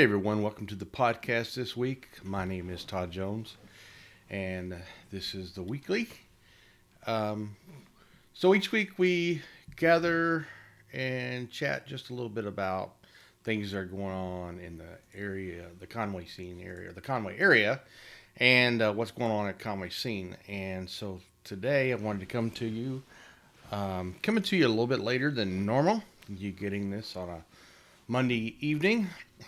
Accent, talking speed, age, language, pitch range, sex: American, 165 wpm, 40-59, English, 95-125 Hz, male